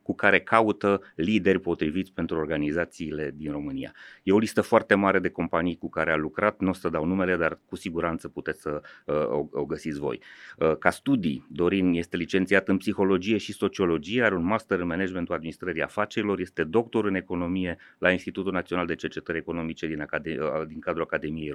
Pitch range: 85-105 Hz